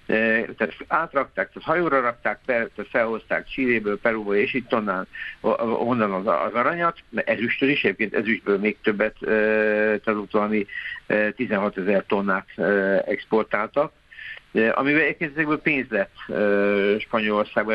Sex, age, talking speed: male, 50-69, 110 wpm